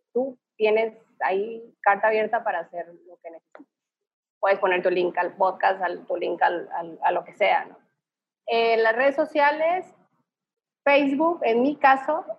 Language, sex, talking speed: Spanish, female, 165 wpm